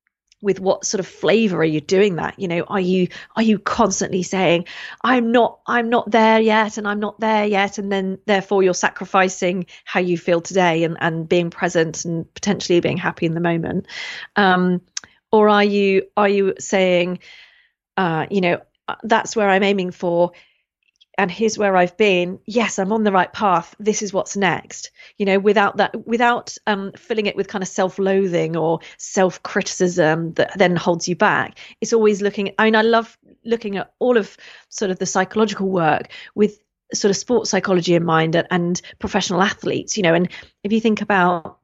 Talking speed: 190 wpm